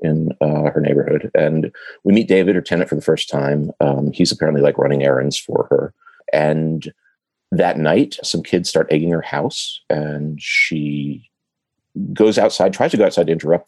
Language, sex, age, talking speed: English, male, 40-59, 180 wpm